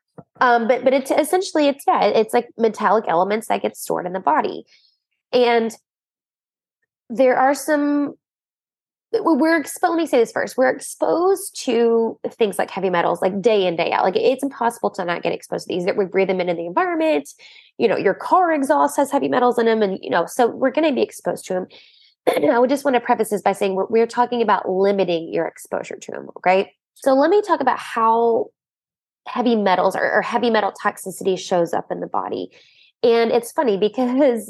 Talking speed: 205 wpm